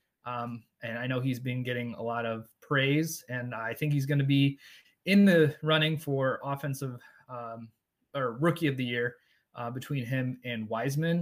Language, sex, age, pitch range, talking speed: English, male, 20-39, 125-155 Hz, 180 wpm